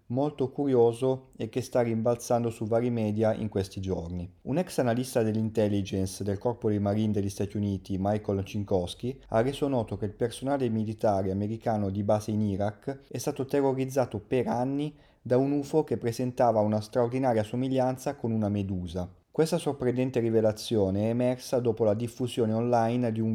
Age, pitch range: 30-49, 105-130 Hz